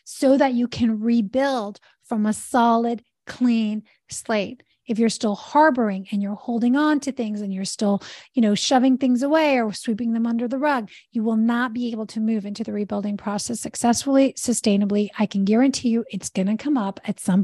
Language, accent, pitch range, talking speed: English, American, 215-260 Hz, 195 wpm